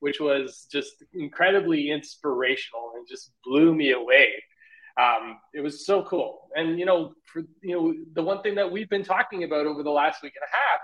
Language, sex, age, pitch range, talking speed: English, male, 30-49, 145-185 Hz, 200 wpm